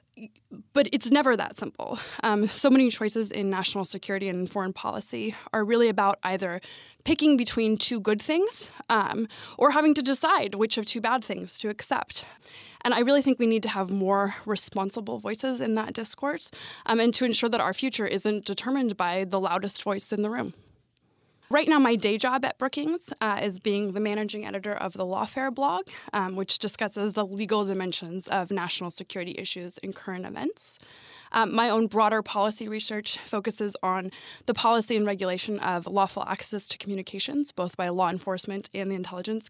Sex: female